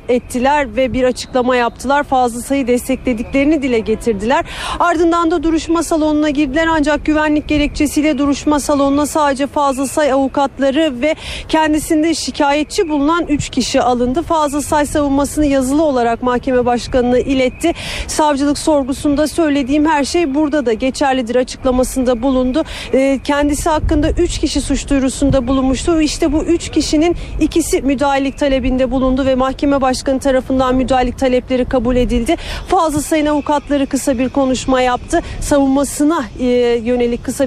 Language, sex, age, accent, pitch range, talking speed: Turkish, female, 40-59, native, 260-305 Hz, 135 wpm